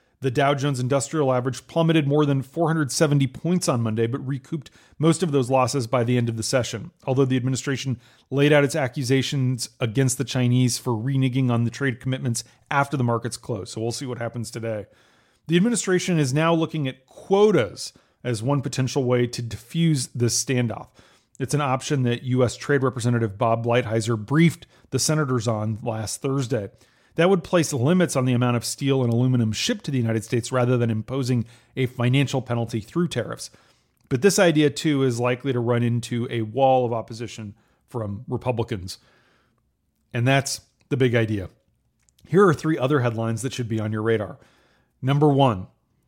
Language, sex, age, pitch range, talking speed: English, male, 30-49, 120-145 Hz, 180 wpm